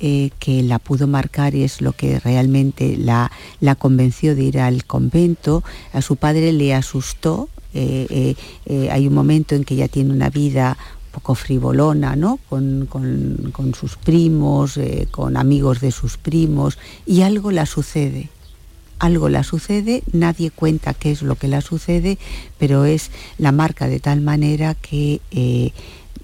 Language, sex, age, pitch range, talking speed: Spanish, female, 50-69, 130-155 Hz, 165 wpm